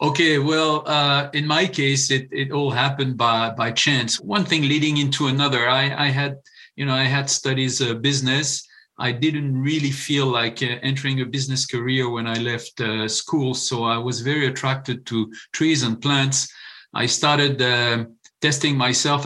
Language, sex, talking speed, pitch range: English, male, 180 wpm, 125-150 Hz